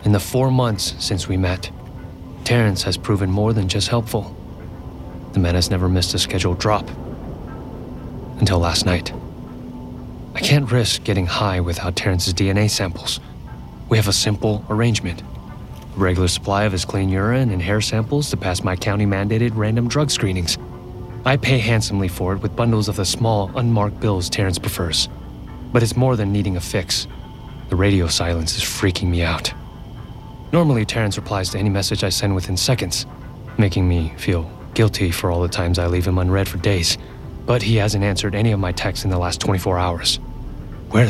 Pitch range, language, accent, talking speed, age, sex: 90-115 Hz, English, American, 175 wpm, 30-49, male